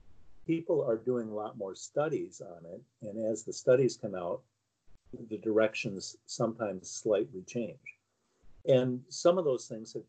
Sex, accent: male, American